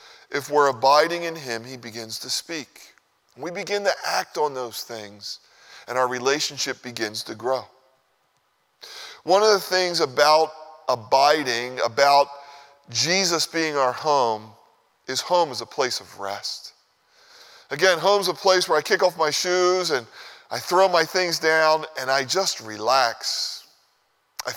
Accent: American